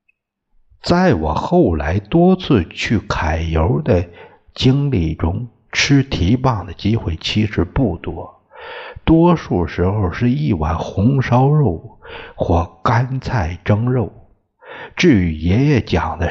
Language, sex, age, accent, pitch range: Chinese, male, 60-79, native, 90-135 Hz